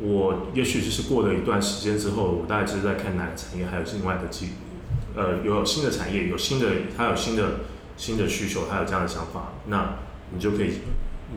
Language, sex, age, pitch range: Chinese, male, 20-39, 90-105 Hz